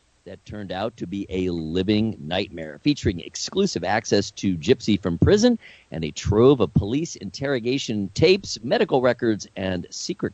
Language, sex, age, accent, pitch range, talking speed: English, male, 50-69, American, 95-140 Hz, 150 wpm